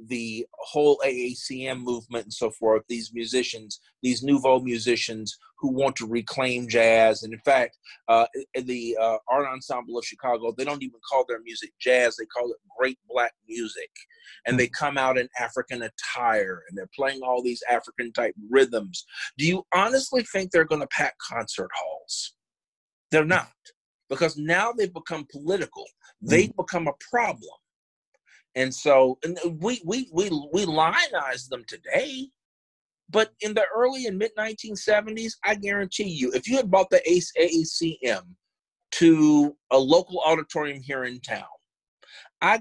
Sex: male